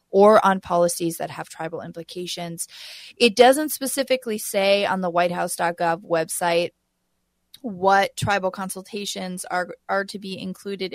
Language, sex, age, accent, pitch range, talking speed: English, female, 20-39, American, 175-195 Hz, 125 wpm